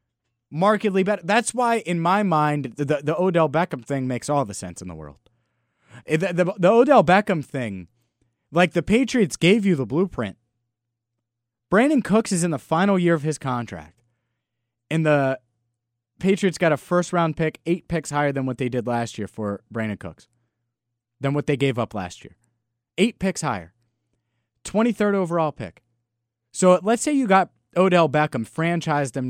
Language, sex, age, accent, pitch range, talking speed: English, male, 30-49, American, 115-165 Hz, 175 wpm